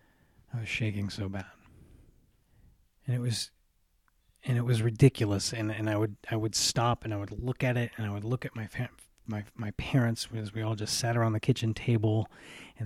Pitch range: 105-125 Hz